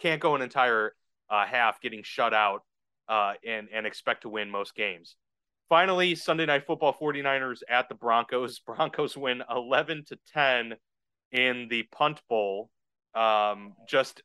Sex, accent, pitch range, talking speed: male, American, 115-150 Hz, 145 wpm